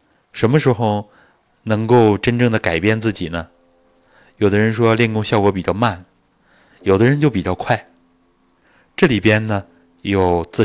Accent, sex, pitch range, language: native, male, 90-125 Hz, Chinese